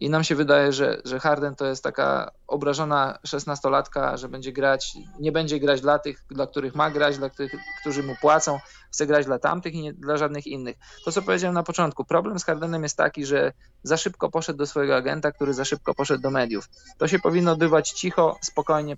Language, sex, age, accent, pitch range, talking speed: Polish, male, 20-39, native, 140-160 Hz, 210 wpm